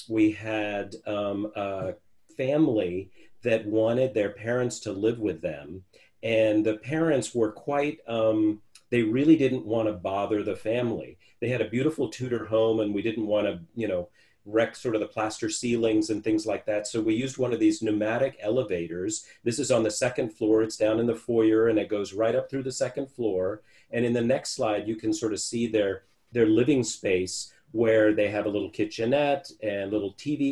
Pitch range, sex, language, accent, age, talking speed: 105-120 Hz, male, English, American, 40-59, 200 wpm